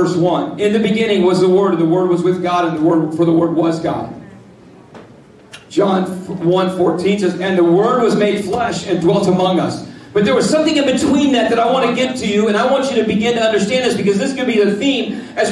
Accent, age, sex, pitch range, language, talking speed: American, 40-59, male, 185-245 Hz, English, 255 wpm